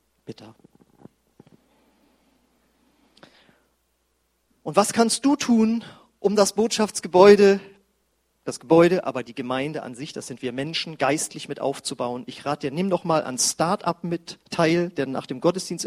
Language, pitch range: German, 135-190 Hz